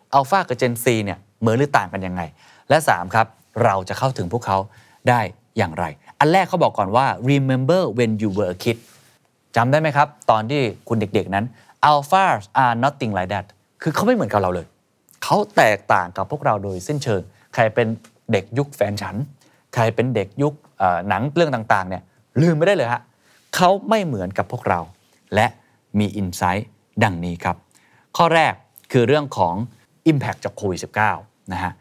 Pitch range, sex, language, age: 100-135 Hz, male, Thai, 20-39